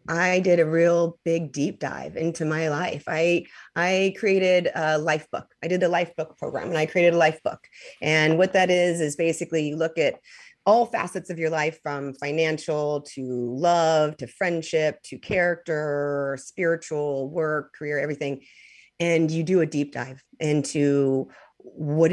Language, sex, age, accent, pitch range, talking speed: English, female, 30-49, American, 155-205 Hz, 170 wpm